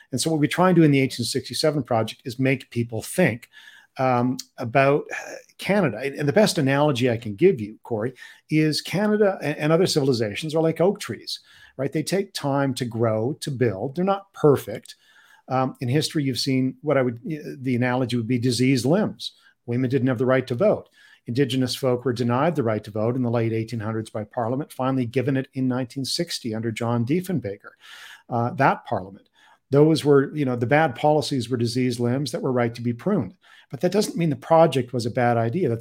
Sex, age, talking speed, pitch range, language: male, 50-69, 200 wpm, 120-150 Hz, English